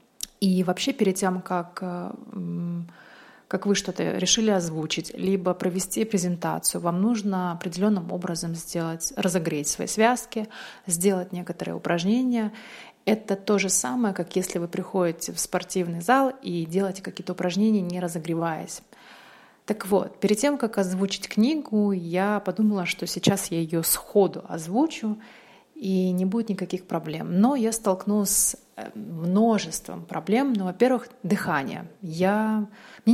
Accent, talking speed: native, 130 wpm